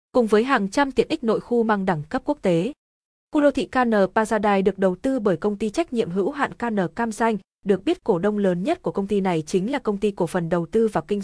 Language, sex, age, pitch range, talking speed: Vietnamese, female, 20-39, 185-240 Hz, 270 wpm